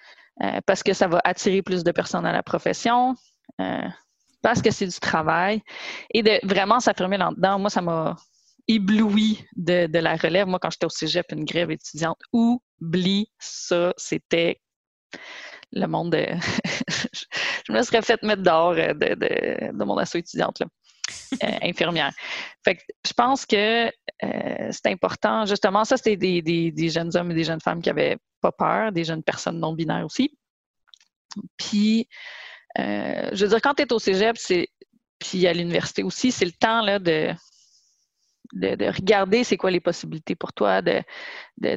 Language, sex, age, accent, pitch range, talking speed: English, female, 30-49, Canadian, 175-235 Hz, 170 wpm